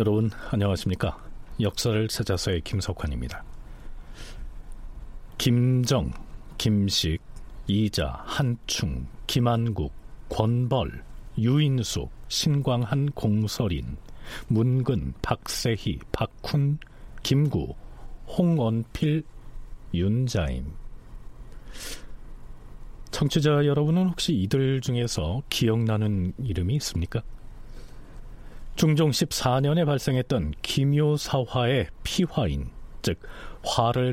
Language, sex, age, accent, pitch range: Korean, male, 40-59, native, 95-135 Hz